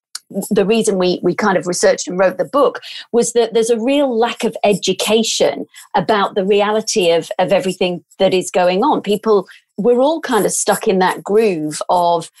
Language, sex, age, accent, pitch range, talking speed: English, female, 40-59, British, 195-255 Hz, 190 wpm